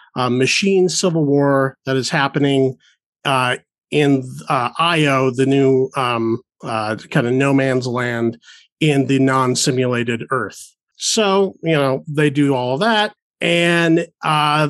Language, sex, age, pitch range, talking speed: English, male, 40-59, 135-165 Hz, 140 wpm